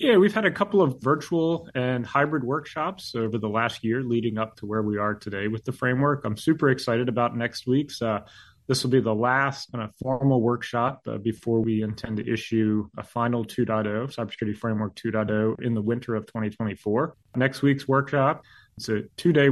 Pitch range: 110-125 Hz